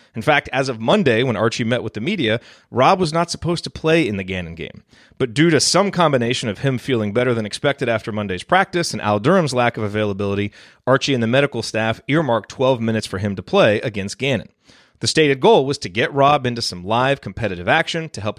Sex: male